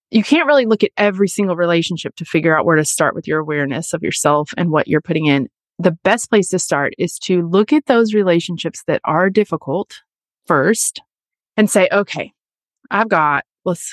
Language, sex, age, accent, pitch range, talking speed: English, female, 30-49, American, 160-205 Hz, 195 wpm